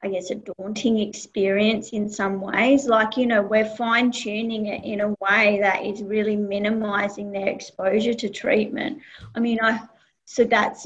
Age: 30-49